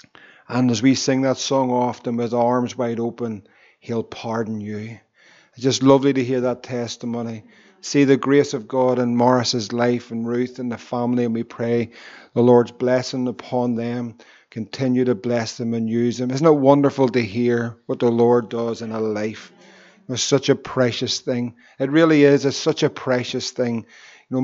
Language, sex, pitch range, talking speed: English, male, 120-135 Hz, 185 wpm